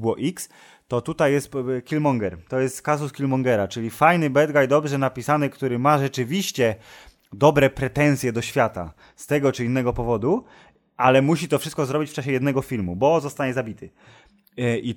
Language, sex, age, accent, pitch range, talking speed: Polish, male, 20-39, native, 120-145 Hz, 160 wpm